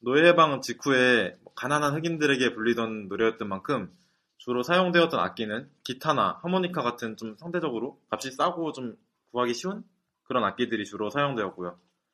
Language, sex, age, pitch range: Korean, male, 20-39, 110-145 Hz